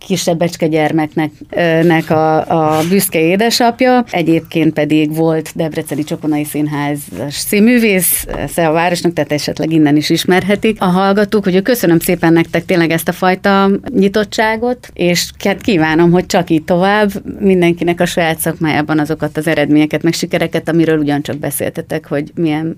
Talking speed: 135 wpm